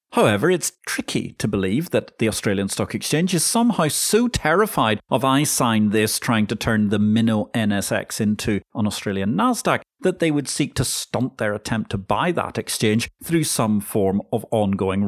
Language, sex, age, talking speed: English, male, 40-59, 180 wpm